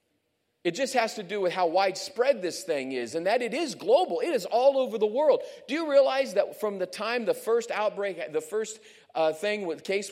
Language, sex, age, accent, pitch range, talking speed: English, male, 40-59, American, 175-275 Hz, 225 wpm